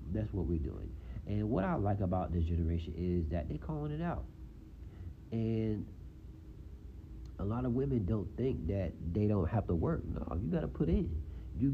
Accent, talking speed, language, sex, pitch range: American, 190 wpm, English, male, 80-105 Hz